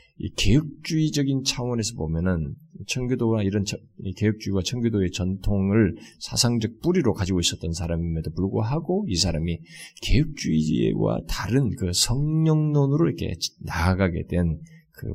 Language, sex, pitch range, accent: Korean, male, 85-130 Hz, native